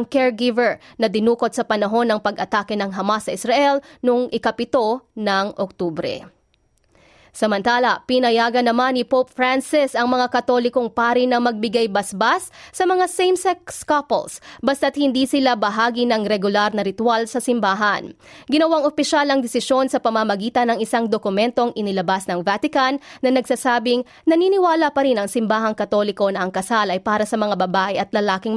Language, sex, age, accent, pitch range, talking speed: Filipino, female, 20-39, native, 215-270 Hz, 150 wpm